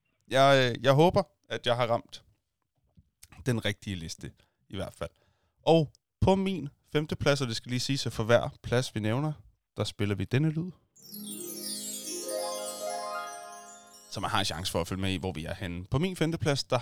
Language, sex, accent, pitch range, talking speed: Danish, male, native, 100-130 Hz, 180 wpm